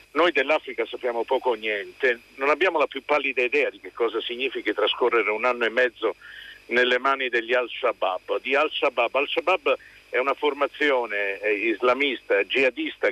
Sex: male